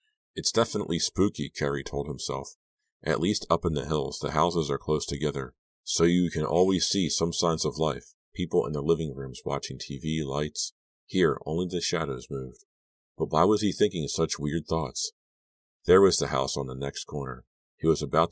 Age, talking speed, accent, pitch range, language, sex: 50-69, 190 wpm, American, 70-80 Hz, English, male